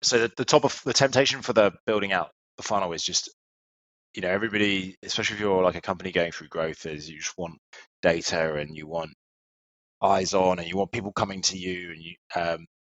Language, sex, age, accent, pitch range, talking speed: English, male, 20-39, British, 75-95 Hz, 220 wpm